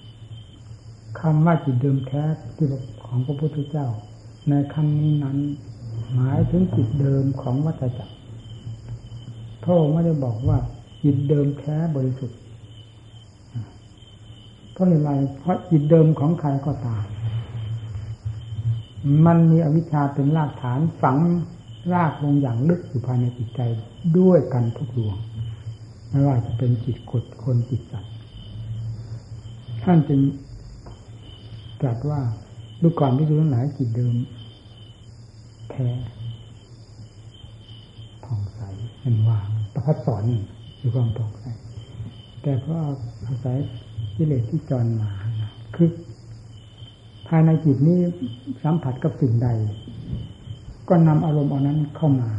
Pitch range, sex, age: 110-140 Hz, male, 60-79